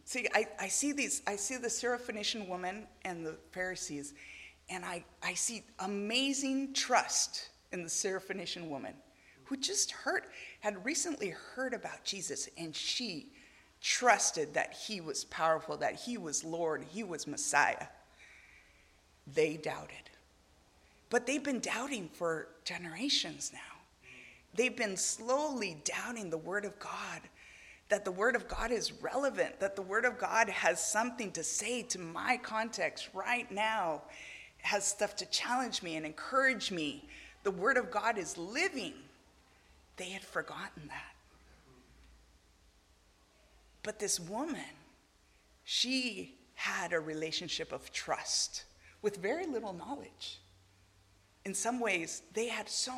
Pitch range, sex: 165-245 Hz, female